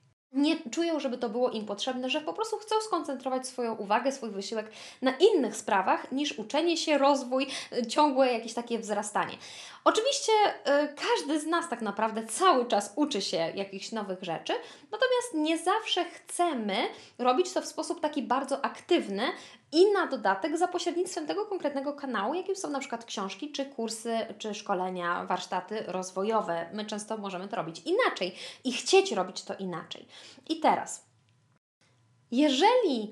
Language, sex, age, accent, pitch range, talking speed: Polish, female, 20-39, native, 205-310 Hz, 150 wpm